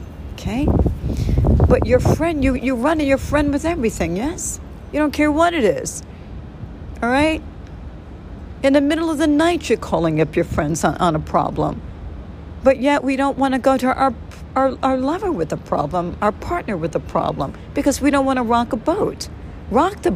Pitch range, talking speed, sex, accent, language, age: 180-270 Hz, 195 wpm, female, American, English, 60-79